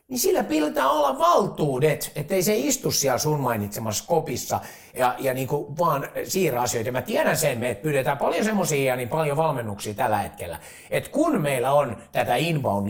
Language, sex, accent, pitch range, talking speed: Finnish, male, native, 130-180 Hz, 175 wpm